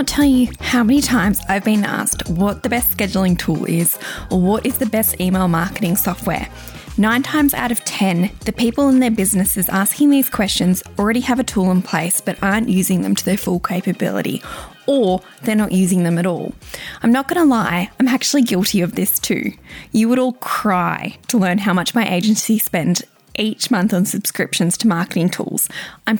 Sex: female